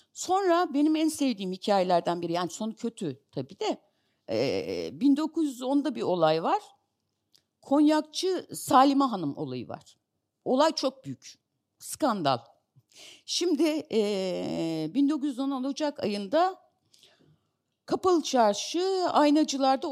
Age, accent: 60-79, native